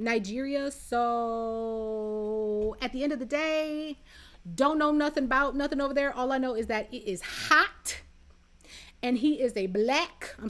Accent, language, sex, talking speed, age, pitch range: American, English, female, 165 wpm, 30-49, 225-310 Hz